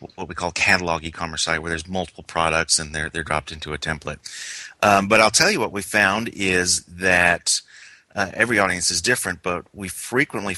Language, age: English, 40-59